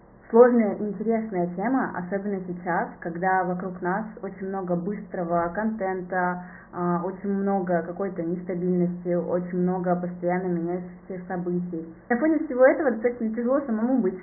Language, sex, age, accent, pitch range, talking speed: Russian, female, 20-39, native, 180-220 Hz, 125 wpm